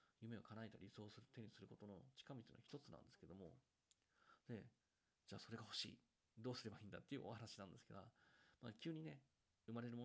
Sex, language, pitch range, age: male, Japanese, 100-130 Hz, 40-59